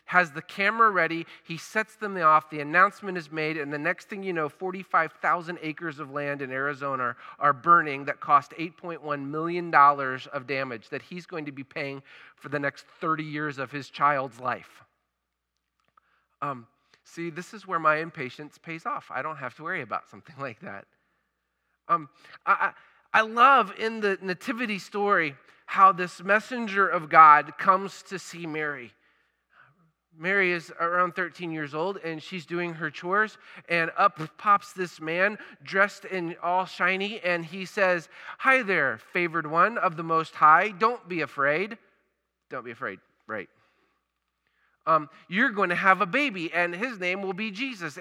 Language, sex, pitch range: English, male, 150-195 Hz